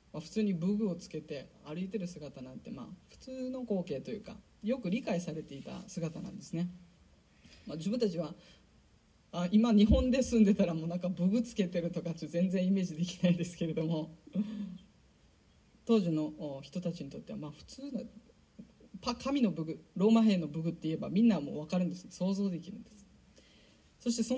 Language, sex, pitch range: Japanese, female, 165-220 Hz